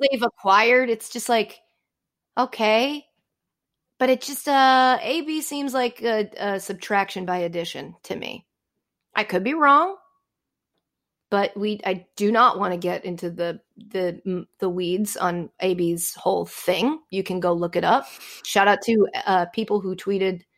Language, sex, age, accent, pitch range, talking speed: English, female, 30-49, American, 190-280 Hz, 155 wpm